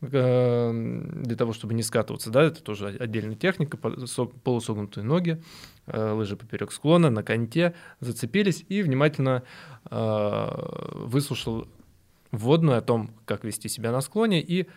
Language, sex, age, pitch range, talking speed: Russian, male, 20-39, 115-150 Hz, 120 wpm